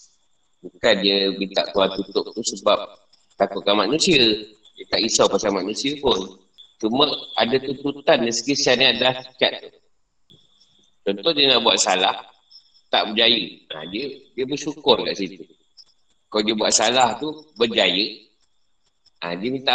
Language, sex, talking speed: Malay, male, 135 wpm